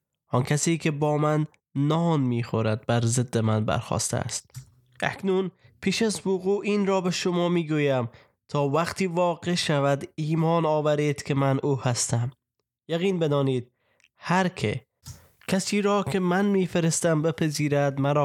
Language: Persian